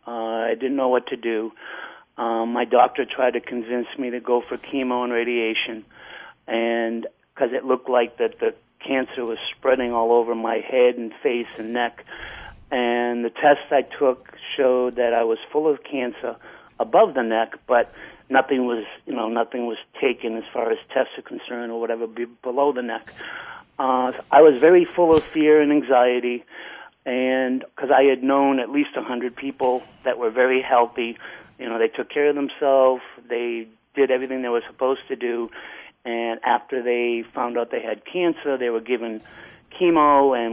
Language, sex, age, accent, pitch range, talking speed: English, male, 50-69, American, 115-135 Hz, 185 wpm